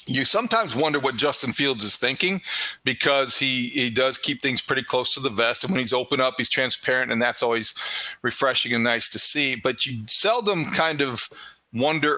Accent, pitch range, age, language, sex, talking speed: American, 140-185 Hz, 40-59, English, male, 195 wpm